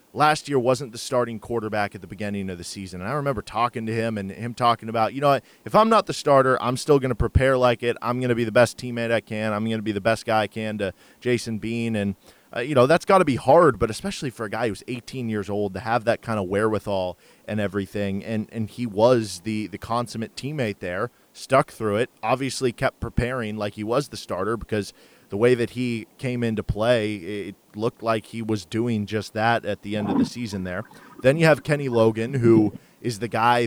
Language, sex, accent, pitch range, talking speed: English, male, American, 105-125 Hz, 240 wpm